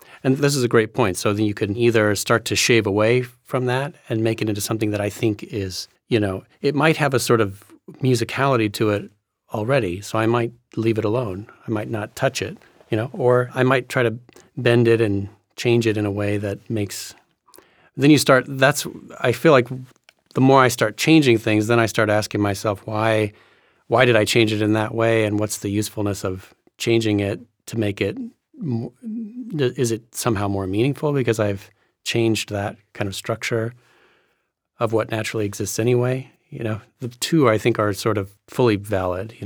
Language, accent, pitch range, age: English, American, 105-120 Hz, 40-59